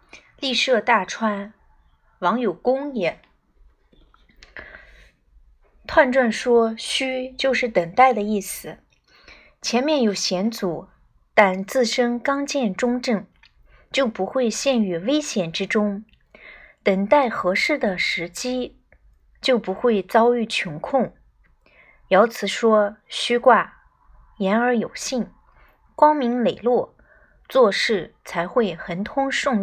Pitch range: 200-265 Hz